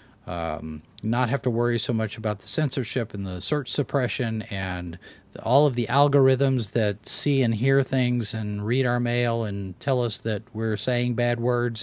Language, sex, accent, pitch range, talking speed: English, male, American, 105-130 Hz, 190 wpm